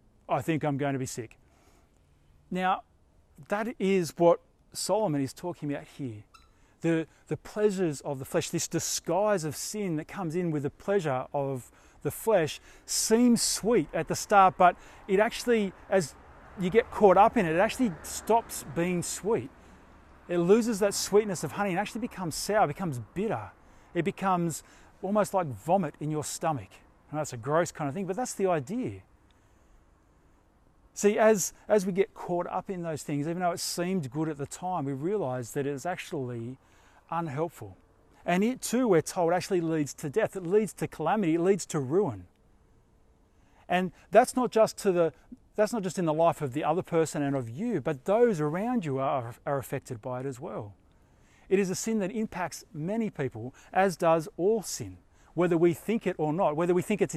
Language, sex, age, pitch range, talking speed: English, male, 40-59, 135-195 Hz, 190 wpm